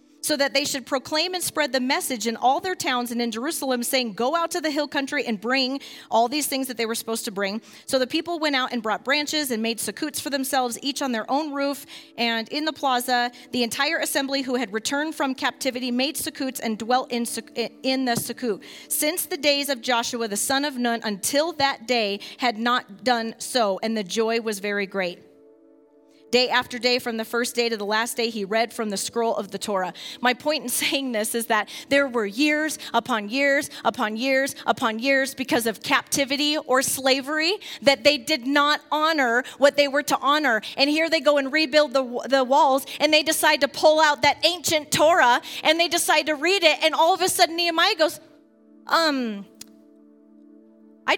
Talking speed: 210 wpm